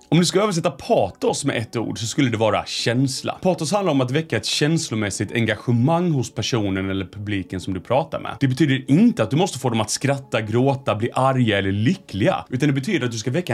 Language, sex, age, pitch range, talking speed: Swedish, male, 30-49, 105-145 Hz, 225 wpm